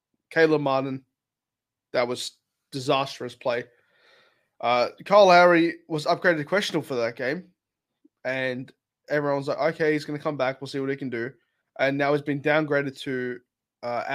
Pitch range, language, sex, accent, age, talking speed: 130-160 Hz, English, male, Australian, 20-39, 165 wpm